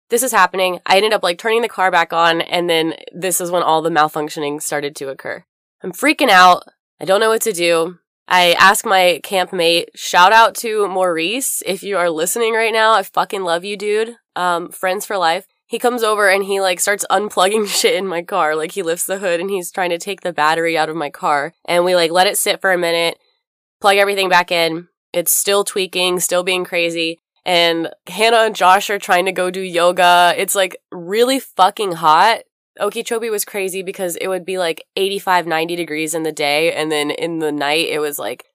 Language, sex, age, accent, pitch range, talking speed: English, female, 20-39, American, 165-195 Hz, 215 wpm